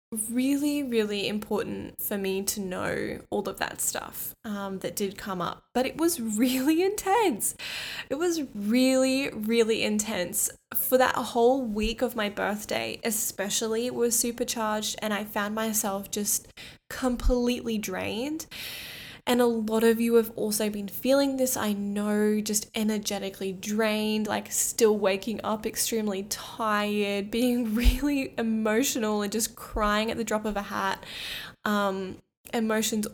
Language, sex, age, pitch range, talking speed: English, female, 10-29, 205-245 Hz, 145 wpm